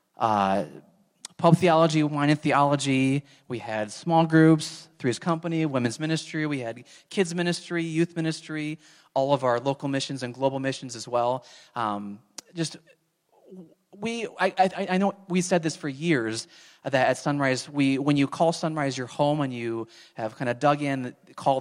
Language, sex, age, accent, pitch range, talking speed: English, male, 30-49, American, 125-155 Hz, 165 wpm